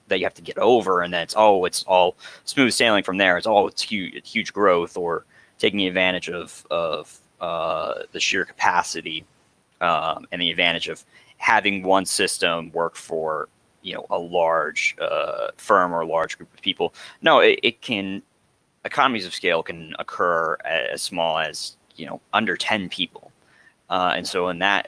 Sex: male